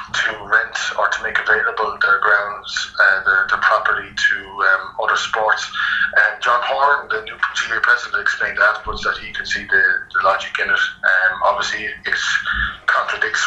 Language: English